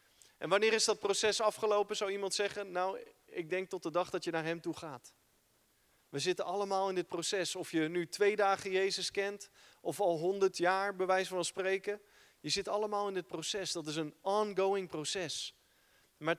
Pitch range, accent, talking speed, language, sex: 170-200 Hz, Dutch, 195 wpm, Dutch, male